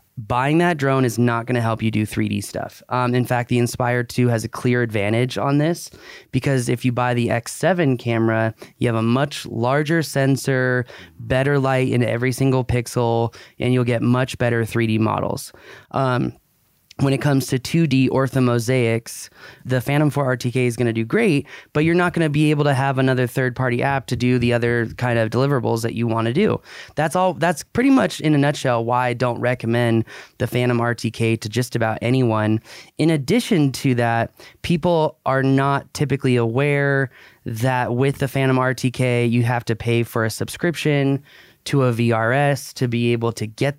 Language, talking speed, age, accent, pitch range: English, 180 wpm, 20-39, American, 120-135 Hz